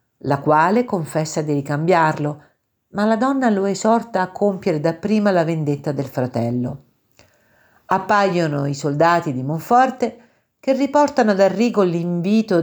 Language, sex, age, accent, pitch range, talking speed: Italian, female, 50-69, native, 145-200 Hz, 130 wpm